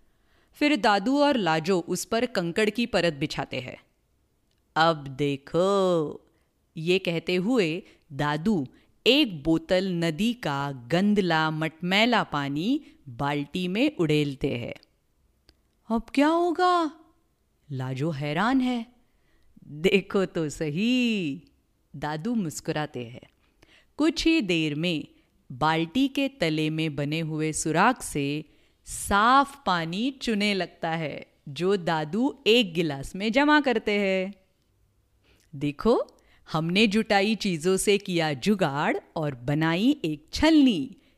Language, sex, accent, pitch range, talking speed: English, female, Indian, 155-230 Hz, 110 wpm